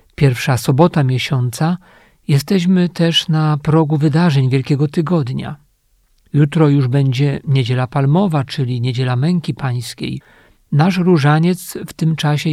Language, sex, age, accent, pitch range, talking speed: Polish, male, 50-69, native, 135-165 Hz, 115 wpm